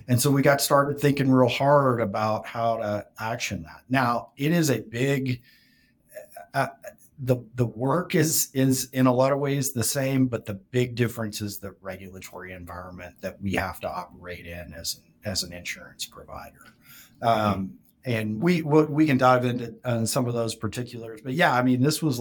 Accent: American